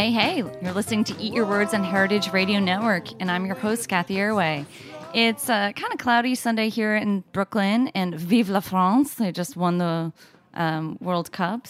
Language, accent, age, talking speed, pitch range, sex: English, American, 20-39, 195 wpm, 165-215 Hz, female